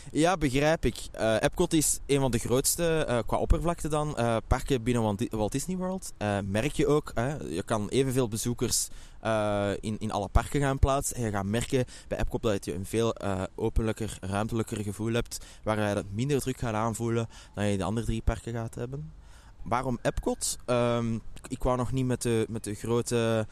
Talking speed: 200 wpm